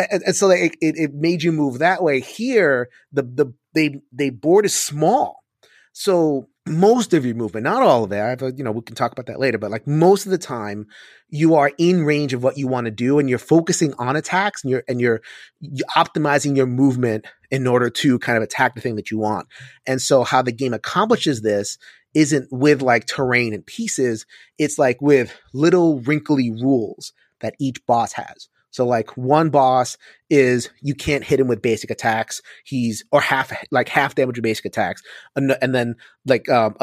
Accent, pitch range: American, 120-150 Hz